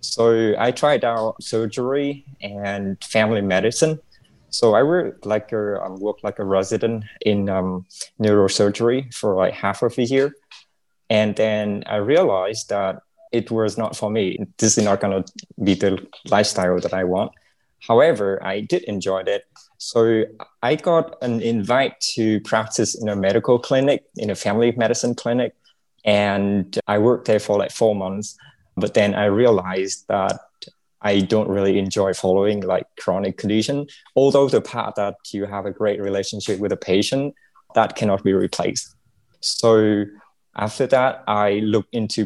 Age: 20-39